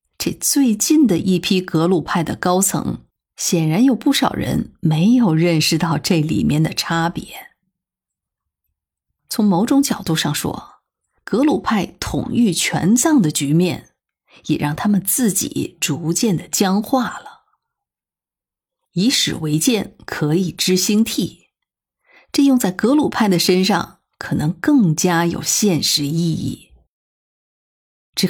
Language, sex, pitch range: Chinese, female, 155-220 Hz